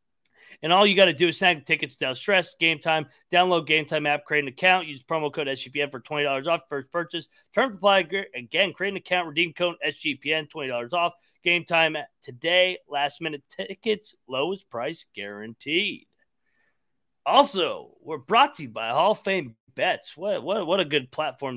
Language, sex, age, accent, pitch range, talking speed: English, male, 30-49, American, 145-185 Hz, 185 wpm